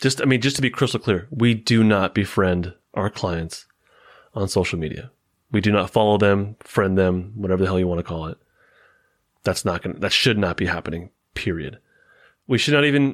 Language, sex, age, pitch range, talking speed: English, male, 30-49, 100-125 Hz, 205 wpm